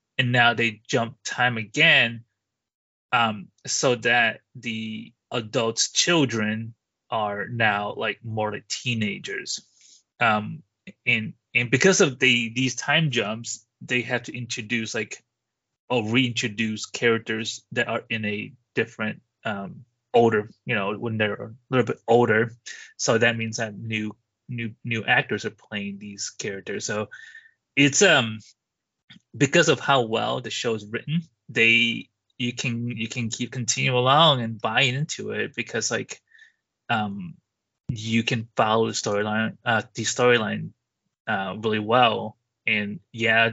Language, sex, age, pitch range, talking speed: English, male, 20-39, 110-125 Hz, 140 wpm